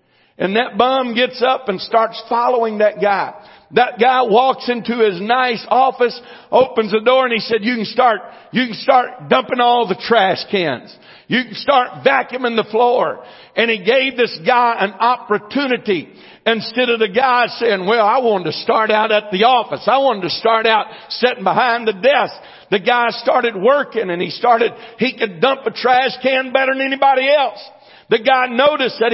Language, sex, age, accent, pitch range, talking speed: English, male, 60-79, American, 225-270 Hz, 185 wpm